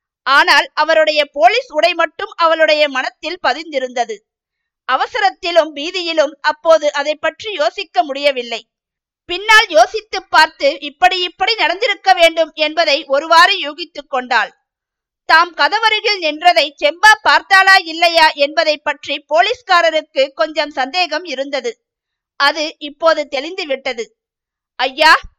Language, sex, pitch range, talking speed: Tamil, female, 290-360 Hz, 100 wpm